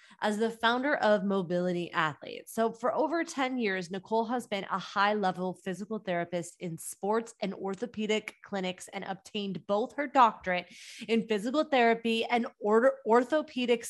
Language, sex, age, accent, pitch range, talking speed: English, female, 20-39, American, 190-250 Hz, 145 wpm